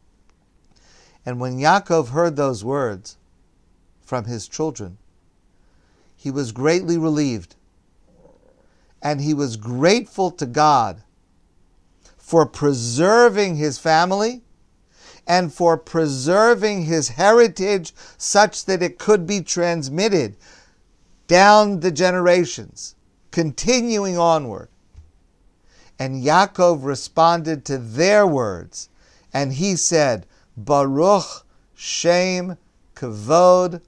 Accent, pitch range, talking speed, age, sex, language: American, 105-175 Hz, 90 wpm, 50-69, male, English